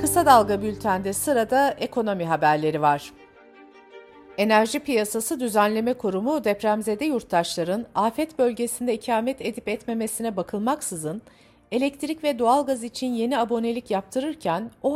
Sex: female